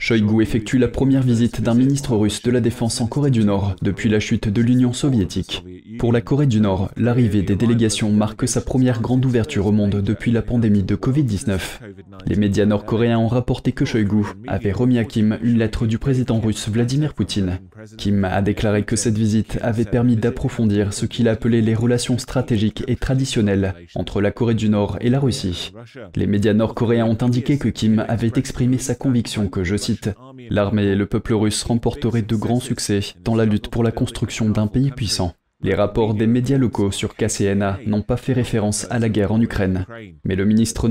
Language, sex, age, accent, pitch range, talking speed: French, male, 20-39, French, 105-120 Hz, 200 wpm